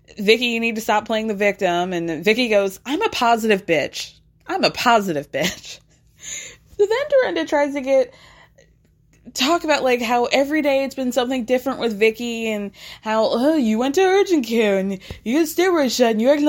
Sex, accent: female, American